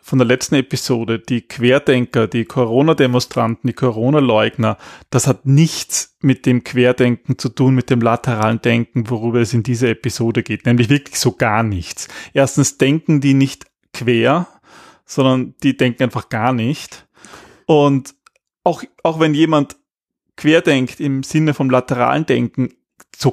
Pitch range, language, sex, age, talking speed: 115-135 Hz, German, male, 30-49, 145 wpm